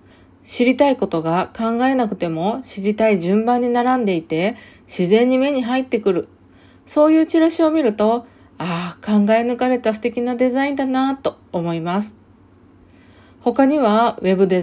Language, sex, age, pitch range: Japanese, female, 40-59, 180-240 Hz